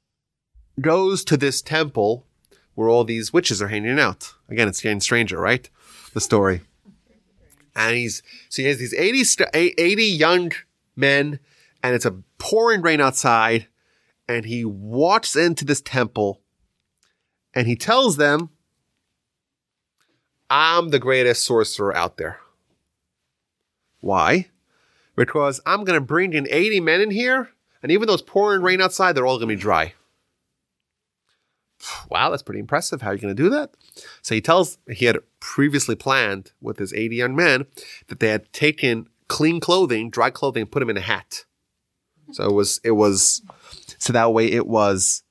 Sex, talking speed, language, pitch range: male, 160 wpm, English, 110-170 Hz